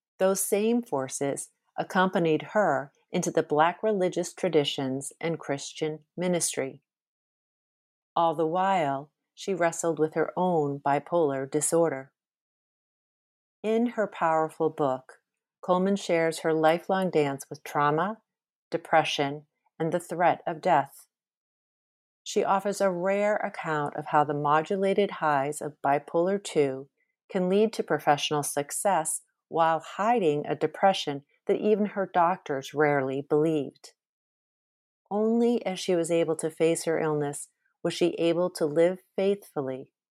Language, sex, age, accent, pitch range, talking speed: English, female, 40-59, American, 150-185 Hz, 125 wpm